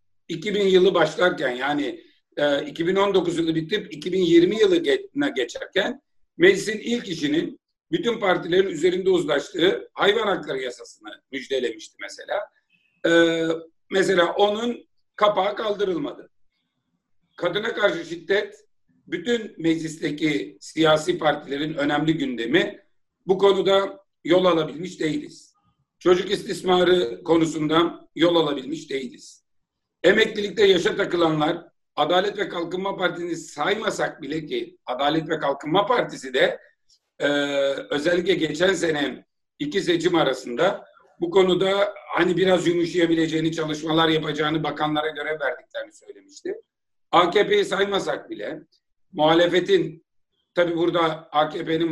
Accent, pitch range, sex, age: native, 155-210 Hz, male, 50-69